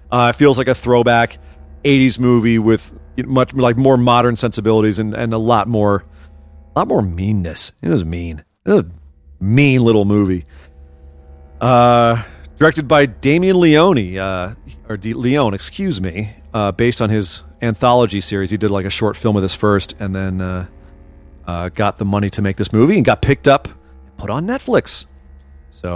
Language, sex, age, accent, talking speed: English, male, 30-49, American, 180 wpm